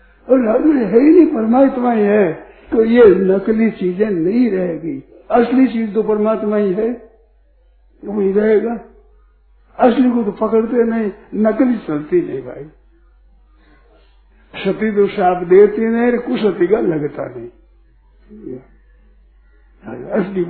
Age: 60-79